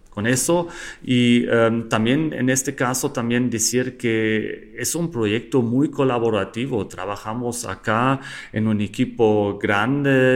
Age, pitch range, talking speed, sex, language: 40-59, 105-135 Hz, 125 wpm, male, Spanish